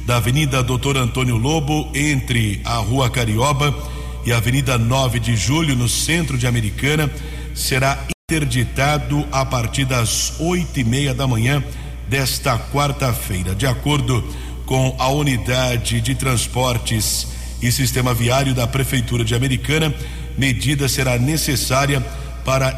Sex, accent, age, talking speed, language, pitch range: male, Brazilian, 50-69, 130 wpm, Portuguese, 120-140 Hz